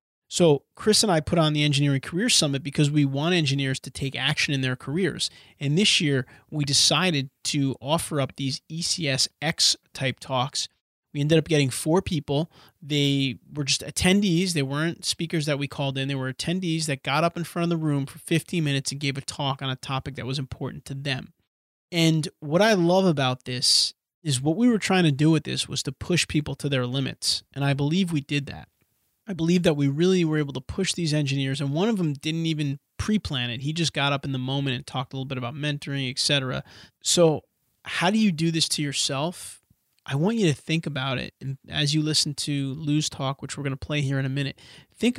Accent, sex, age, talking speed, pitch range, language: American, male, 30-49, 225 wpm, 140-165 Hz, English